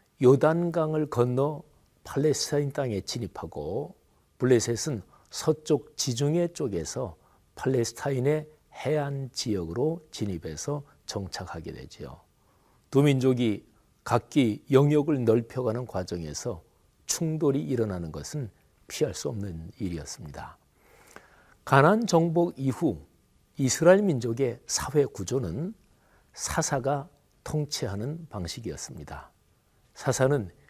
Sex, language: male, Korean